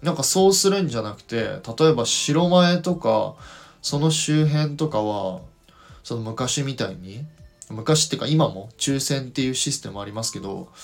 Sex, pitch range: male, 105-155 Hz